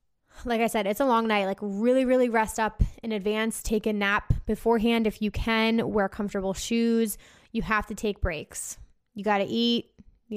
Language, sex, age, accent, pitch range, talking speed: English, female, 20-39, American, 200-225 Hz, 195 wpm